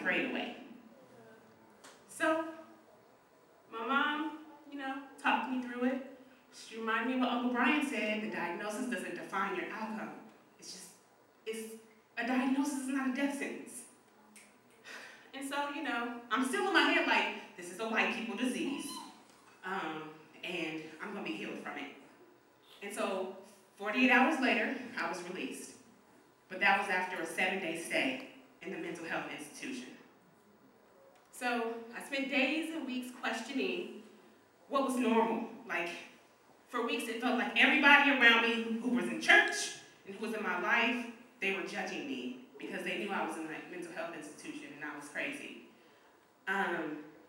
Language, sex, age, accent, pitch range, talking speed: English, female, 20-39, American, 200-270 Hz, 160 wpm